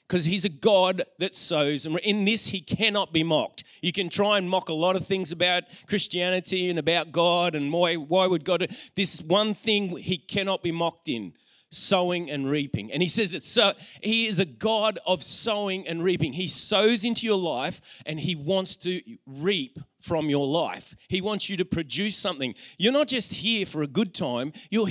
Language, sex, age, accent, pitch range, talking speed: English, male, 30-49, Australian, 160-205 Hz, 200 wpm